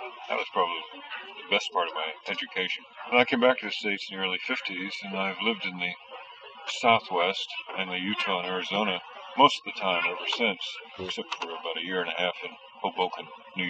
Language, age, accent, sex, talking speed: English, 50-69, American, male, 205 wpm